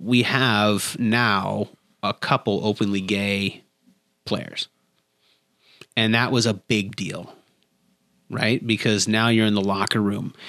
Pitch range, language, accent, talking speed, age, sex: 100-120 Hz, English, American, 125 wpm, 30-49, male